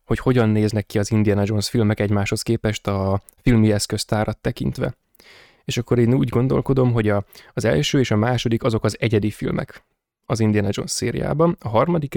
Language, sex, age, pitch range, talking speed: Hungarian, male, 20-39, 105-120 Hz, 175 wpm